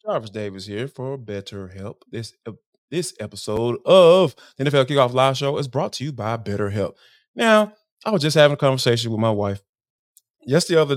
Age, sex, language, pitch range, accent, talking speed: 20-39, male, English, 120-180 Hz, American, 180 wpm